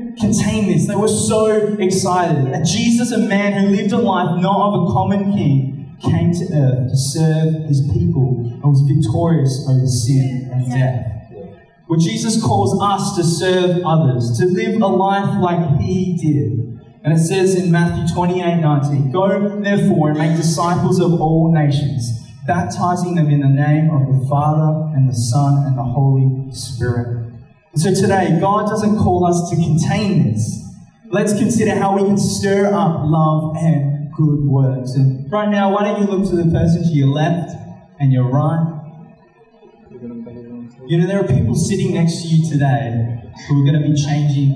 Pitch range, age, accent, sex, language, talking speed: 135-185 Hz, 20-39, Australian, male, English, 175 wpm